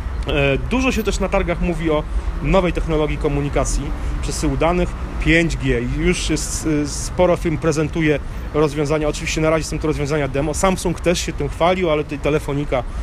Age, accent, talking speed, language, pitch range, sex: 30-49, native, 150 wpm, Polish, 115-150 Hz, male